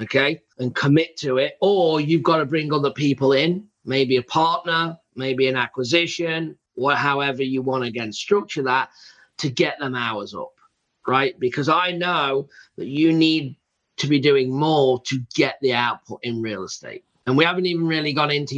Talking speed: 185 wpm